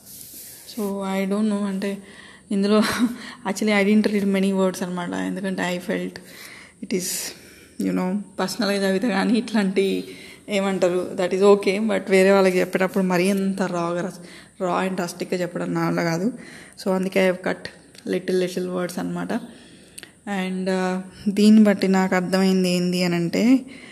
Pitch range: 180-200 Hz